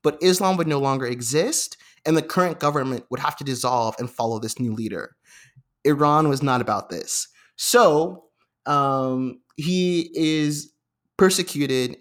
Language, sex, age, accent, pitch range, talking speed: English, male, 20-39, American, 125-165 Hz, 145 wpm